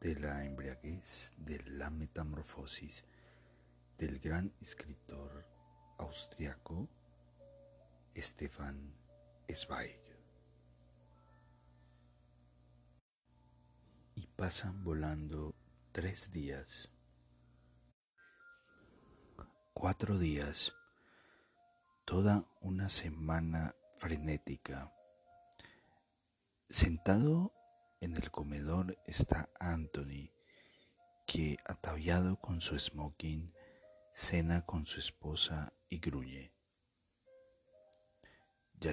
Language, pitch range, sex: Spanish, 70-95 Hz, male